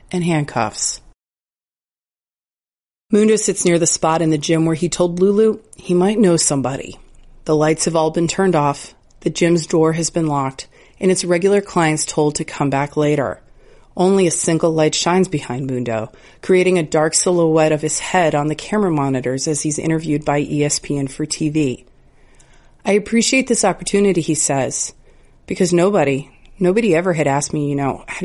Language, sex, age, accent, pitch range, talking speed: English, female, 30-49, American, 145-180 Hz, 170 wpm